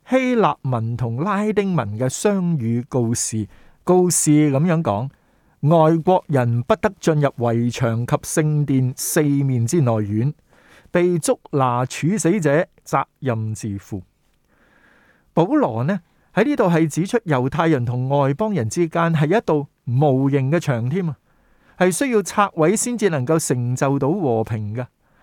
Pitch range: 125-170 Hz